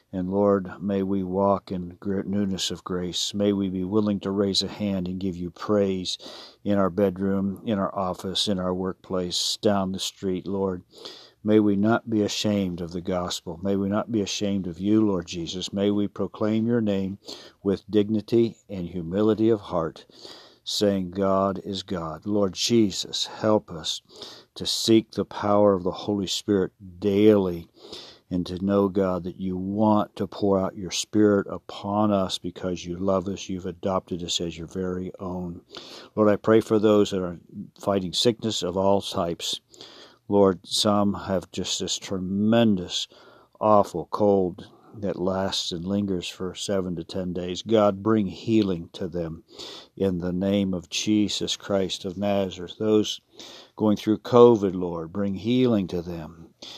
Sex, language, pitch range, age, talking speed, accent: male, English, 90-105 Hz, 50-69, 165 wpm, American